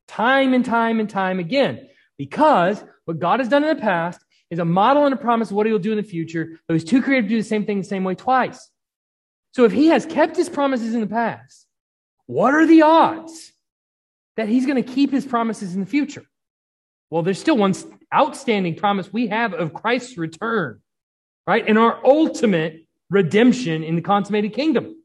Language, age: English, 30-49